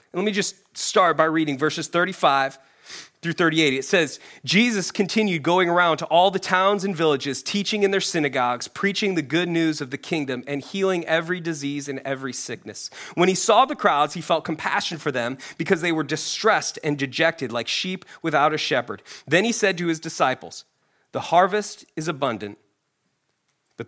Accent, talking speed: American, 180 wpm